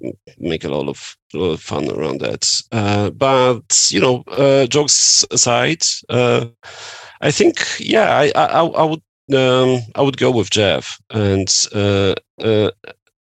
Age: 40-59